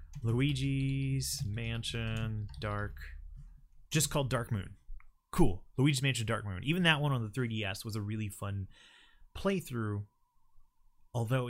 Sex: male